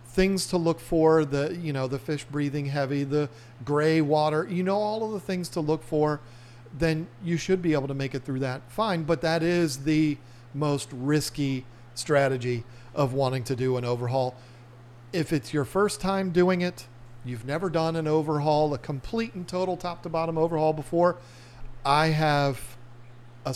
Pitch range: 120-160 Hz